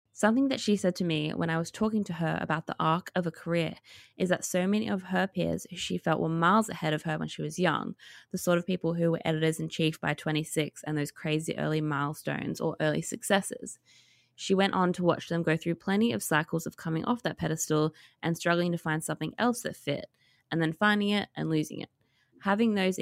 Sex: female